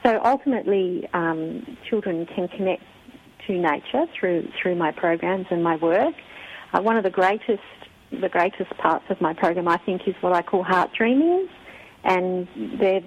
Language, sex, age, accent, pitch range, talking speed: English, female, 40-59, Australian, 185-225 Hz, 165 wpm